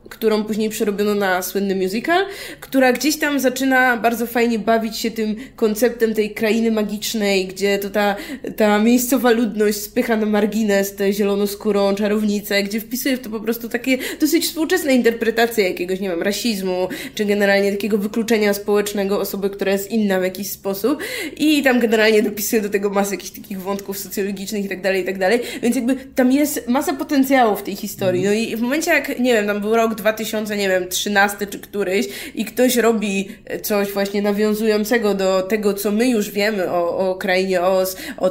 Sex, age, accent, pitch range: female, 20-39, native, 200-260 Hz